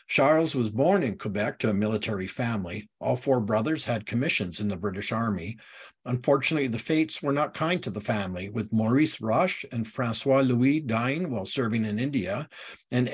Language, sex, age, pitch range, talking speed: English, male, 50-69, 110-135 Hz, 180 wpm